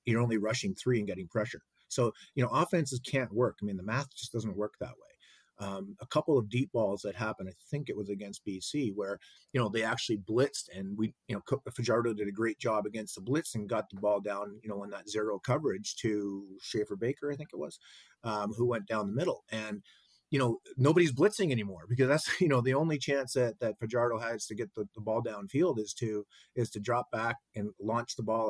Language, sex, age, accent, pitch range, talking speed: English, male, 30-49, American, 105-130 Hz, 235 wpm